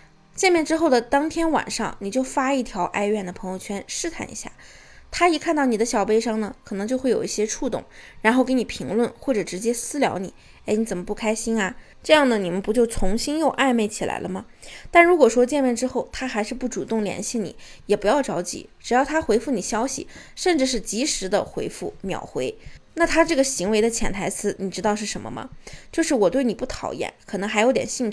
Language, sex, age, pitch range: Chinese, female, 20-39, 205-265 Hz